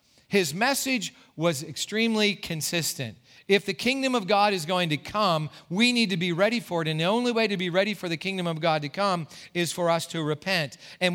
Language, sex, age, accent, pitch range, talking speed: English, male, 40-59, American, 155-200 Hz, 220 wpm